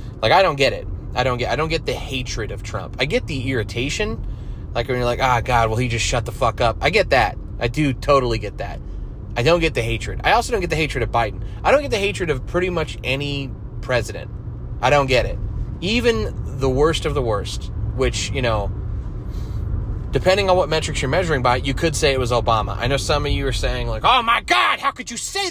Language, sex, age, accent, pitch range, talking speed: English, male, 30-49, American, 105-135 Hz, 245 wpm